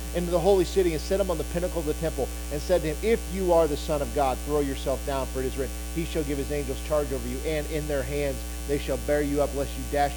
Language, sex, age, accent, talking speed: English, male, 40-59, American, 300 wpm